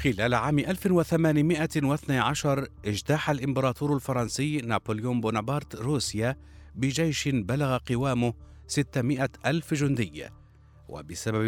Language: Arabic